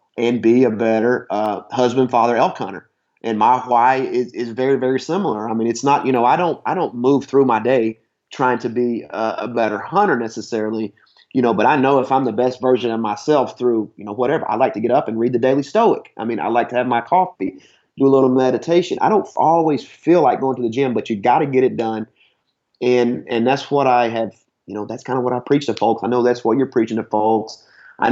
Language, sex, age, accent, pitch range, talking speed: English, male, 30-49, American, 115-135 Hz, 250 wpm